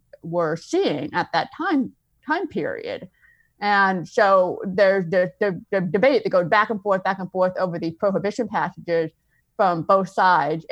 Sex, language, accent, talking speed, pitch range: female, English, American, 150 wpm, 165-205 Hz